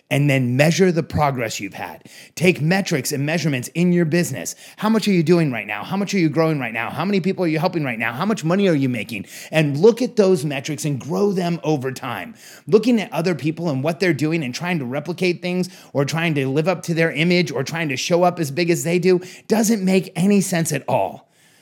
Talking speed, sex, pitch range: 245 wpm, male, 145-185 Hz